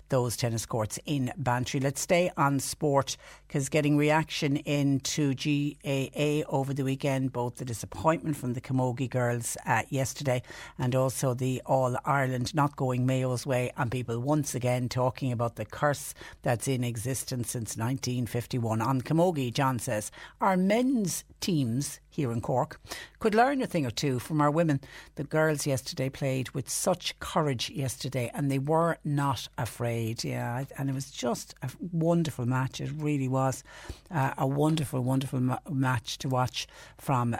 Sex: female